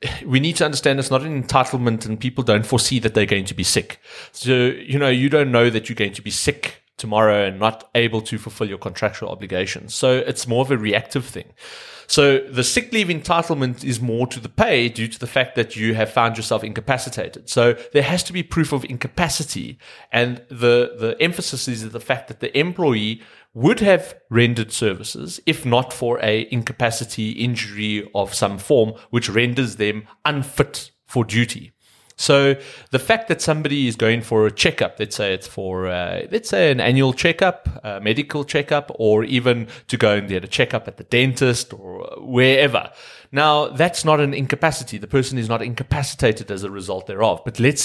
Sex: male